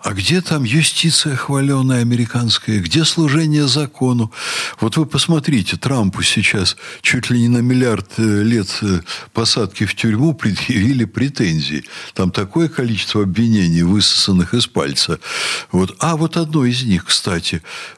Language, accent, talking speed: Russian, native, 125 wpm